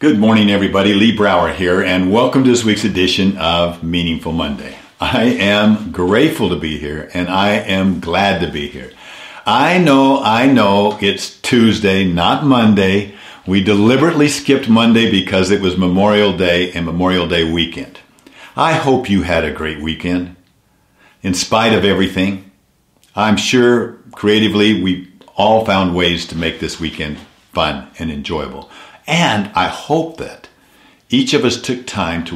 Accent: American